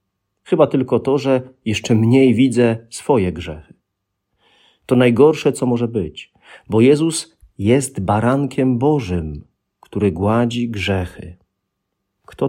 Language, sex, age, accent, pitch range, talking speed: Polish, male, 40-59, native, 100-130 Hz, 110 wpm